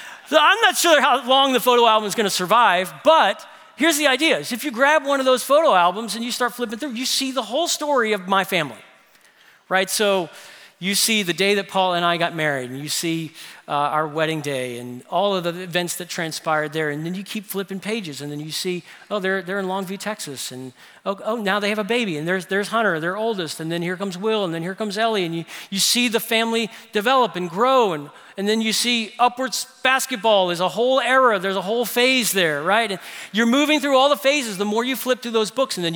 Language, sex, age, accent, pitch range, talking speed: English, male, 40-59, American, 185-245 Hz, 245 wpm